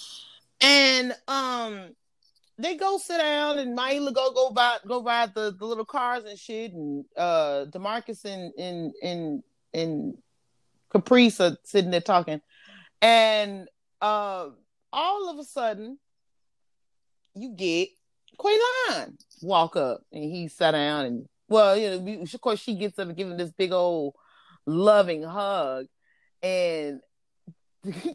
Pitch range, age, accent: 155-245 Hz, 30-49, American